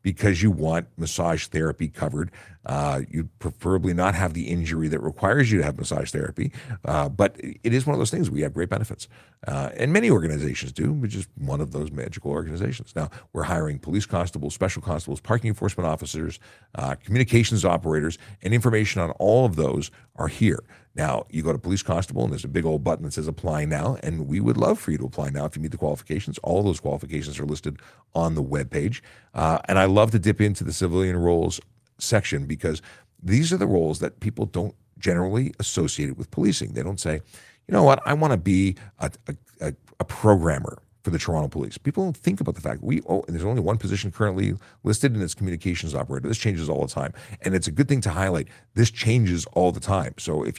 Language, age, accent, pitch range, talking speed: English, 50-69, American, 80-110 Hz, 215 wpm